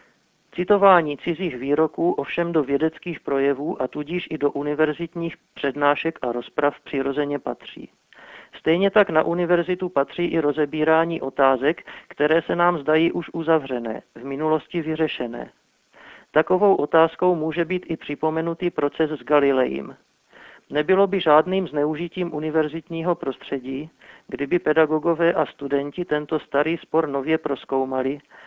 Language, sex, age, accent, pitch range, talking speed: Czech, male, 50-69, native, 140-170 Hz, 120 wpm